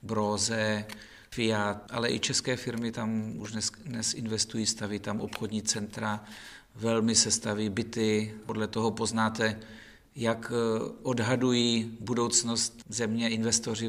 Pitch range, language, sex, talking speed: 105-115 Hz, Czech, male, 110 wpm